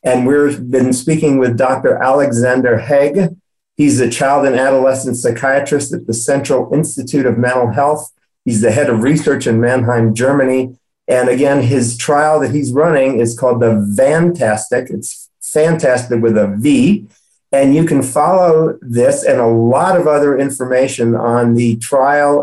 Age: 50-69